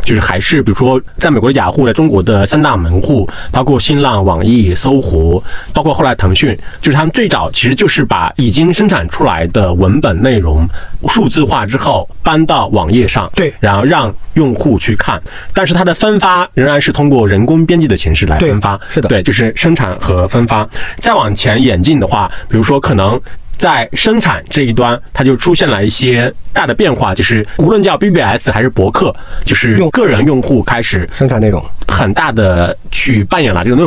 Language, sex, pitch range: Chinese, male, 95-140 Hz